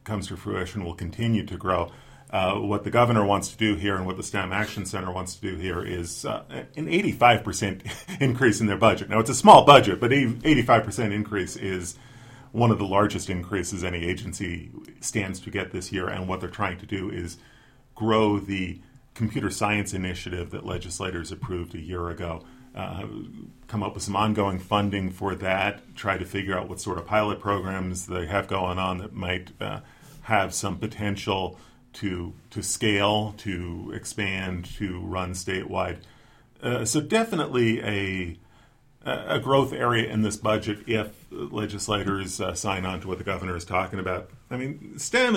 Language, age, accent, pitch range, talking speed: English, 40-59, American, 95-110 Hz, 175 wpm